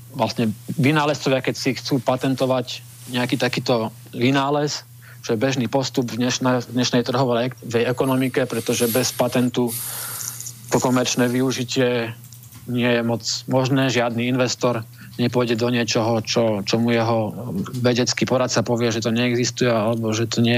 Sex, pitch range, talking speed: male, 115-125 Hz, 135 wpm